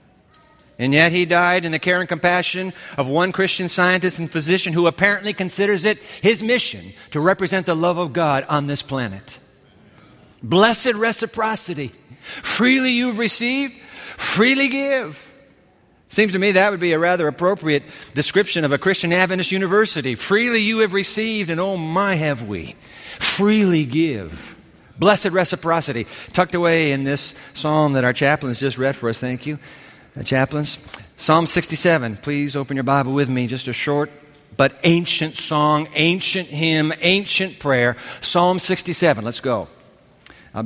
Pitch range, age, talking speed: 135-185 Hz, 50-69, 155 wpm